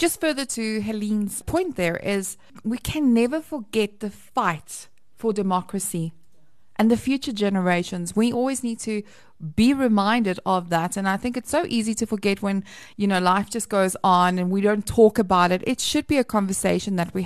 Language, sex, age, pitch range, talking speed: English, female, 20-39, 185-230 Hz, 190 wpm